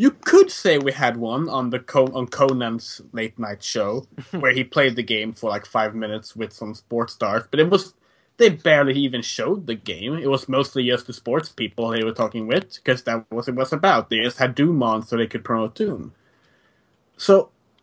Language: English